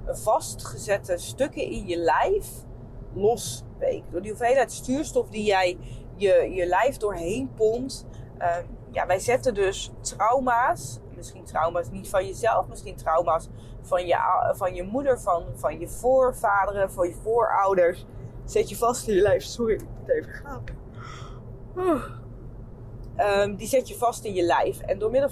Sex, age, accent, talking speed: female, 20-39, Dutch, 155 wpm